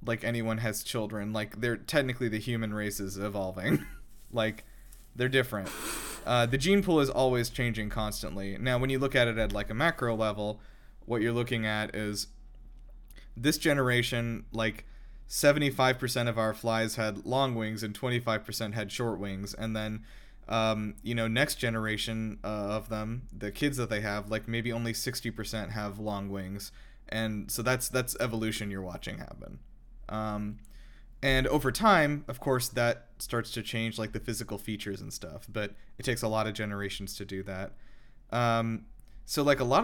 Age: 20-39